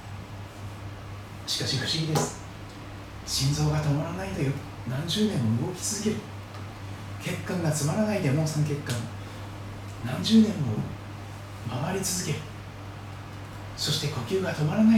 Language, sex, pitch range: Japanese, male, 100-135 Hz